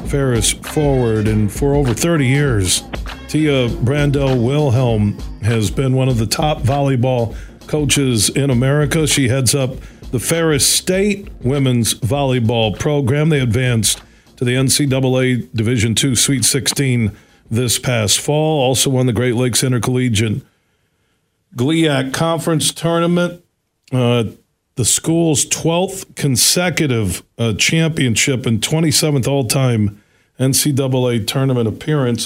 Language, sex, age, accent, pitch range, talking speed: English, male, 50-69, American, 115-145 Hz, 120 wpm